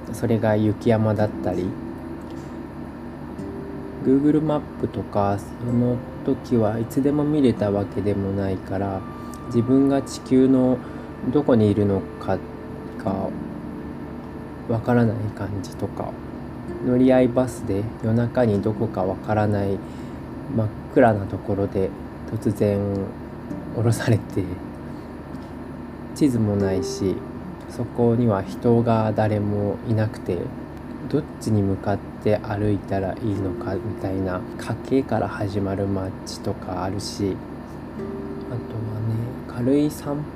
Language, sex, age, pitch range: Japanese, male, 20-39, 100-125 Hz